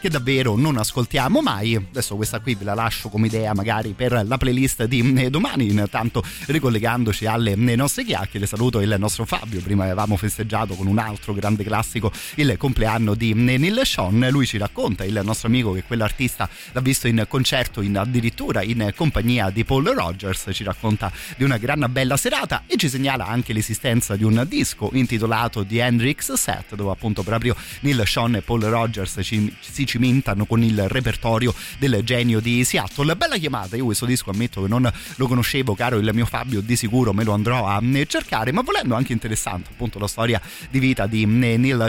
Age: 30-49